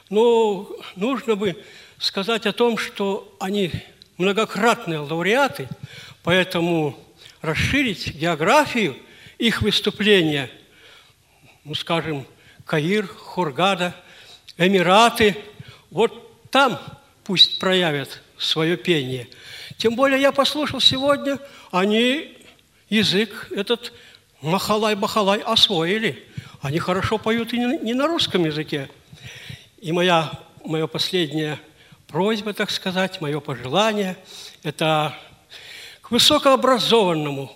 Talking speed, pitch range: 90 wpm, 155-220 Hz